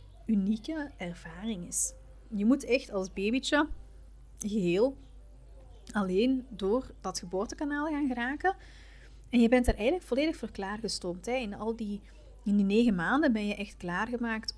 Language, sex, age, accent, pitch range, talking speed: Dutch, female, 30-49, Dutch, 190-235 Hz, 135 wpm